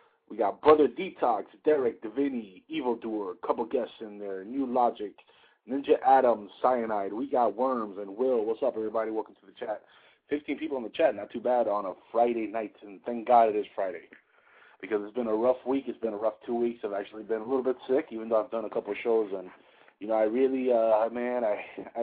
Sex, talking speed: male, 220 wpm